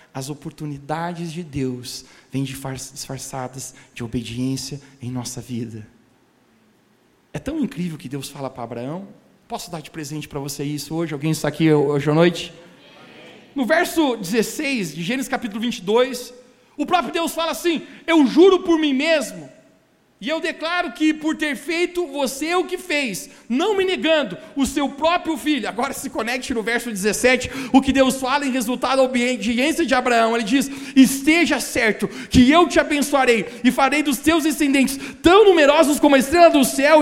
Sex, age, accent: male, 40-59, Brazilian